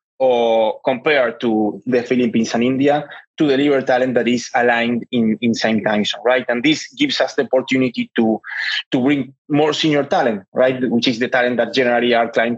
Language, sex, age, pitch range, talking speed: English, male, 20-39, 120-150 Hz, 185 wpm